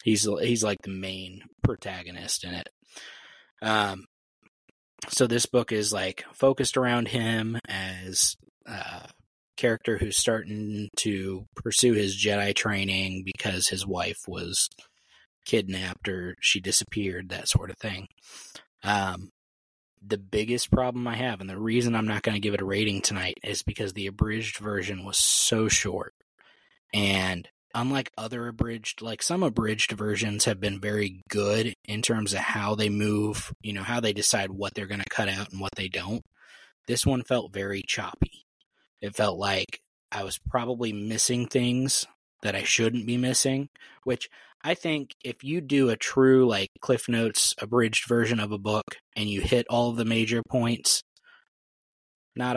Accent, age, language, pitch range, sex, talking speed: American, 20-39, English, 100-120 Hz, male, 160 wpm